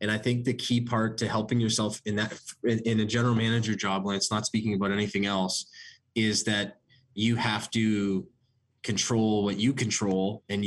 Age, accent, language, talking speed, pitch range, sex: 20-39, American, English, 185 wpm, 100-110 Hz, male